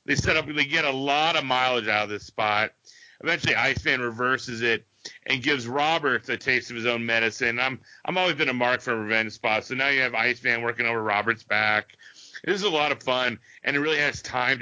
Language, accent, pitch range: English, American, 115-135 Hz